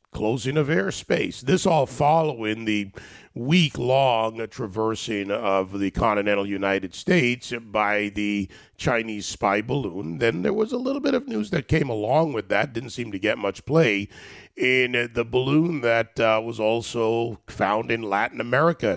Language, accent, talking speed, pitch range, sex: English, American, 155 wpm, 100-130 Hz, male